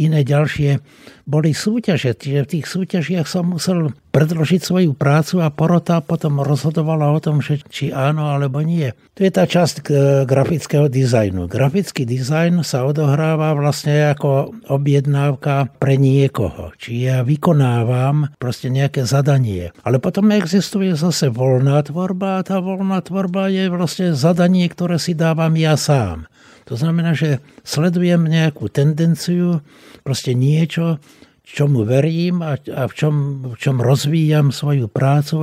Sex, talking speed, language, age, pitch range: male, 140 wpm, Slovak, 60-79, 135-165 Hz